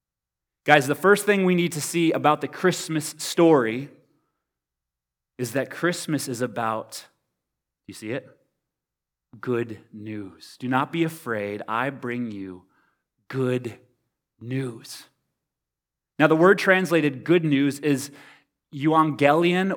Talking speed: 120 wpm